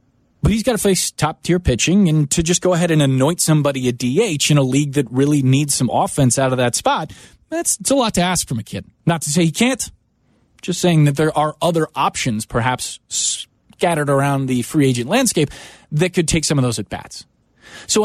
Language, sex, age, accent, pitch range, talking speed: English, male, 30-49, American, 130-170 Hz, 215 wpm